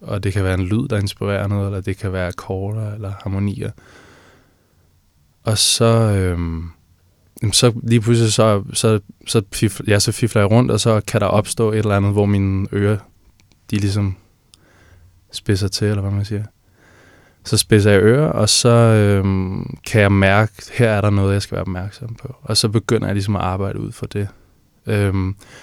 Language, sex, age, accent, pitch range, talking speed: Danish, male, 20-39, native, 95-115 Hz, 185 wpm